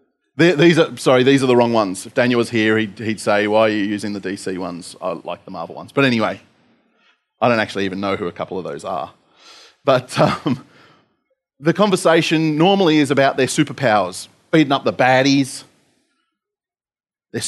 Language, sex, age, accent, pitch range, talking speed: English, male, 30-49, Australian, 110-145 Hz, 185 wpm